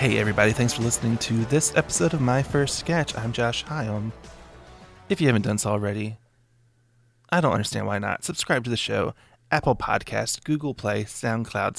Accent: American